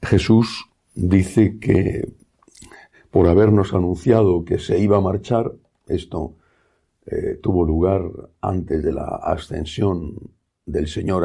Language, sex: Spanish, male